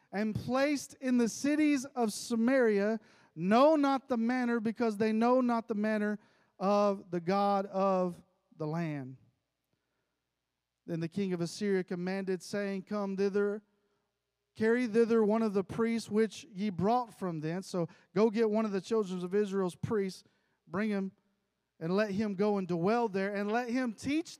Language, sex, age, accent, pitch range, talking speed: English, male, 40-59, American, 160-215 Hz, 160 wpm